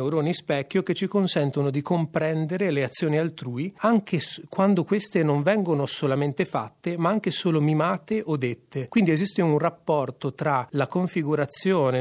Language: Italian